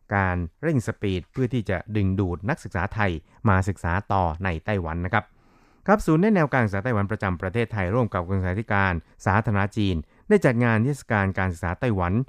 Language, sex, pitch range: Thai, male, 95-115 Hz